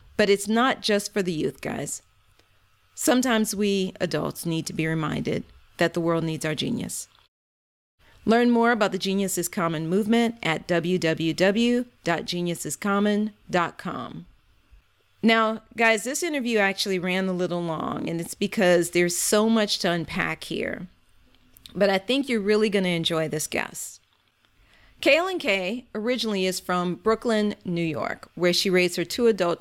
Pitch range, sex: 170-215 Hz, female